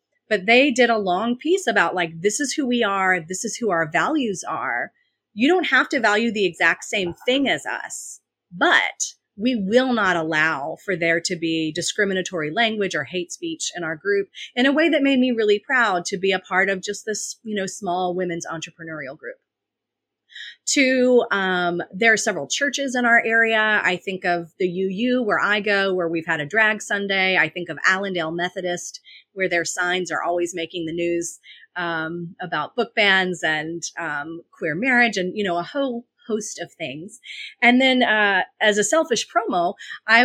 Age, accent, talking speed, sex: 30-49, American, 190 wpm, female